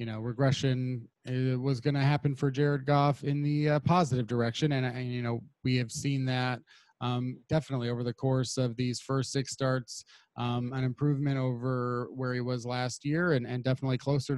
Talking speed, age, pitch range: 195 wpm, 30-49, 130-150 Hz